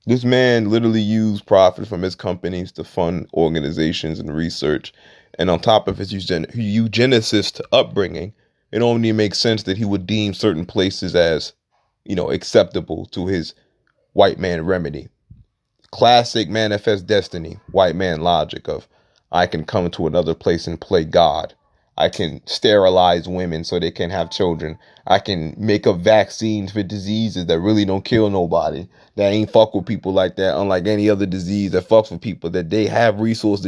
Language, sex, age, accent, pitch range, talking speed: English, male, 30-49, American, 90-110 Hz, 170 wpm